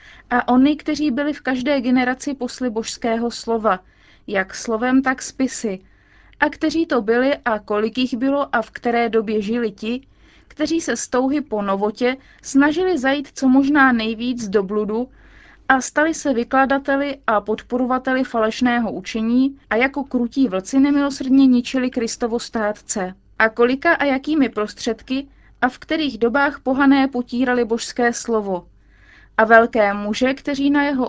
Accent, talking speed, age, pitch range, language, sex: native, 145 wpm, 30-49, 225-270 Hz, Czech, female